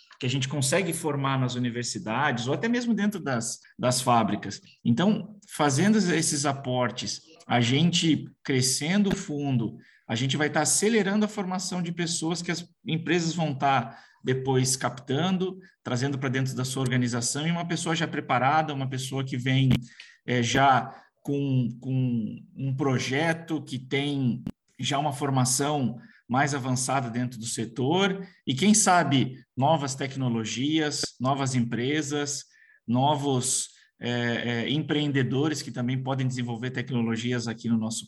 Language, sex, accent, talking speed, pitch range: Portuguese, male, Brazilian, 135 wpm, 125-160 Hz